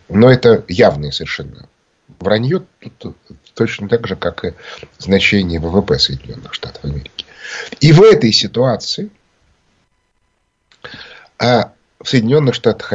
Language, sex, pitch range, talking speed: Russian, male, 95-135 Hz, 110 wpm